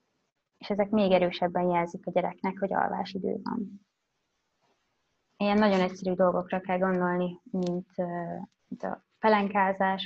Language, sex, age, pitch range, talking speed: Hungarian, female, 20-39, 180-200 Hz, 125 wpm